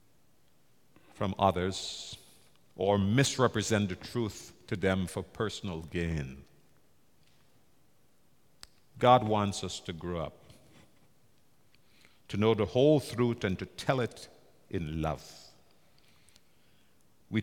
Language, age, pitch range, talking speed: English, 60-79, 90-120 Hz, 100 wpm